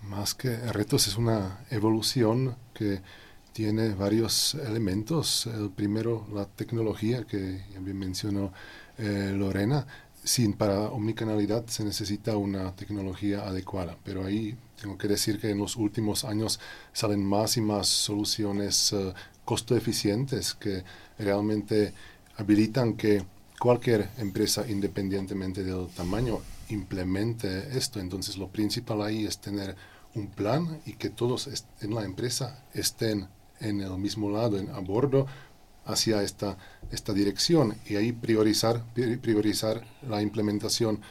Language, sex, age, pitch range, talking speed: Spanish, male, 40-59, 100-115 Hz, 135 wpm